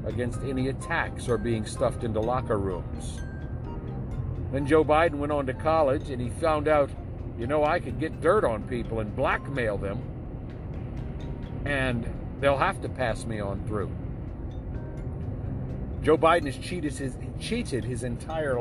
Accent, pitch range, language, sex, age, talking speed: American, 115-150 Hz, English, male, 50-69, 150 wpm